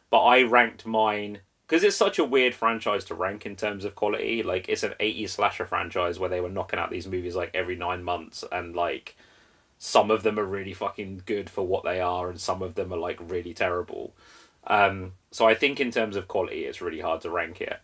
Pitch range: 95-115 Hz